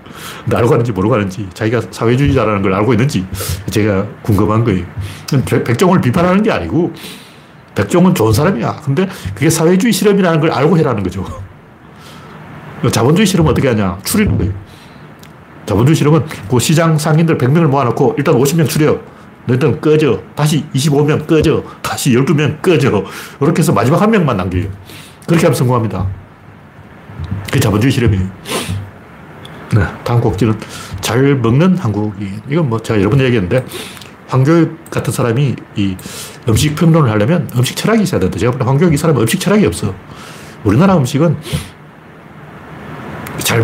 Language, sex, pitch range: Korean, male, 105-160 Hz